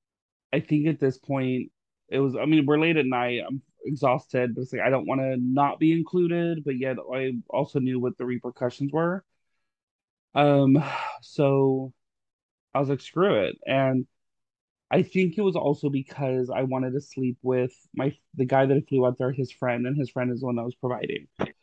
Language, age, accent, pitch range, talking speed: English, 20-39, American, 125-140 Hz, 200 wpm